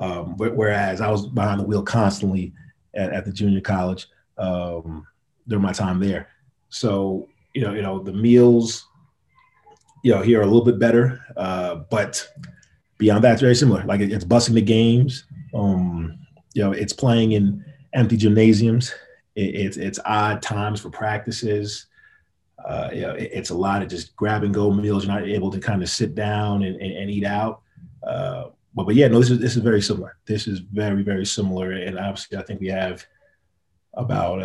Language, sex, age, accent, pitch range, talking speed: English, male, 30-49, American, 95-115 Hz, 190 wpm